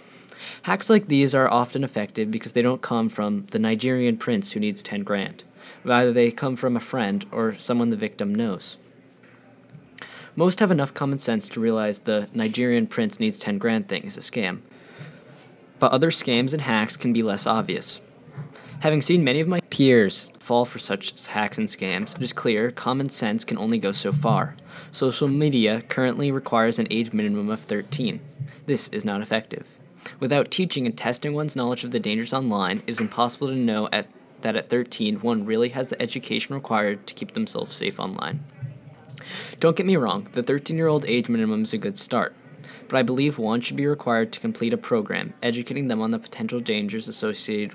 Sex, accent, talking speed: male, American, 190 wpm